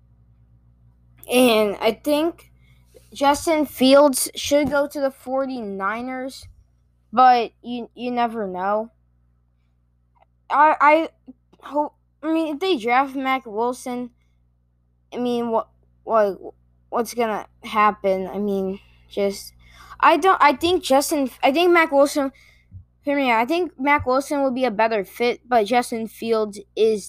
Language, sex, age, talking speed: English, female, 20-39, 130 wpm